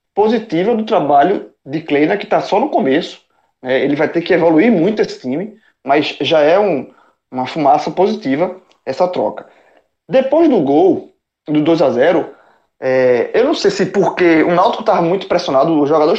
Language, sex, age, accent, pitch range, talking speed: Portuguese, male, 20-39, Brazilian, 150-210 Hz, 170 wpm